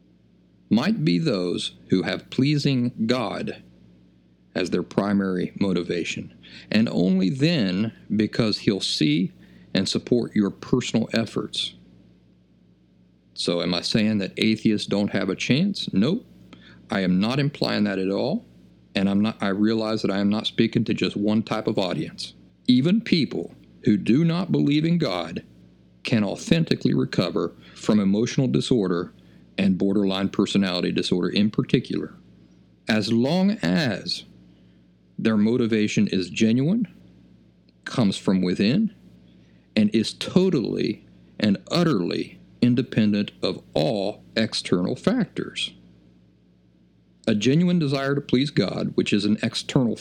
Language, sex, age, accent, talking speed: English, male, 50-69, American, 125 wpm